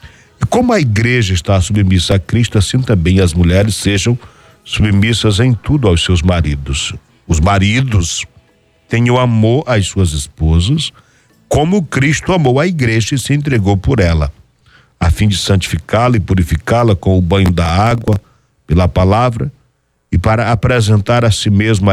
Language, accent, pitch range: Portuguese, Brazilian, 90-120 Hz